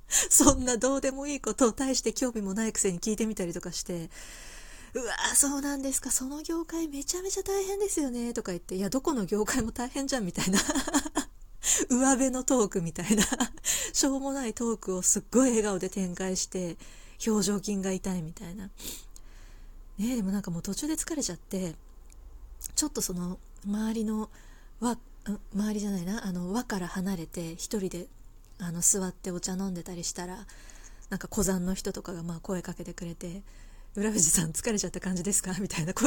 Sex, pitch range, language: female, 185-250 Hz, Japanese